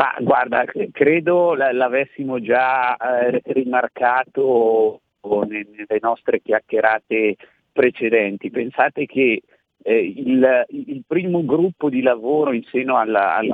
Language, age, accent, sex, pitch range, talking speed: Italian, 50-69, native, male, 115-140 Hz, 105 wpm